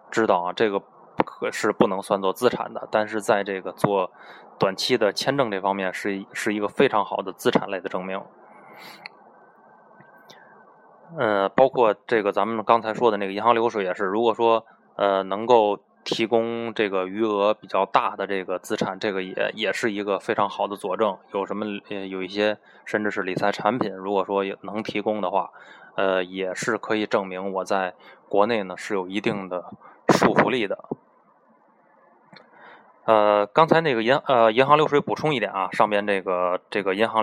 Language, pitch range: Chinese, 95-115 Hz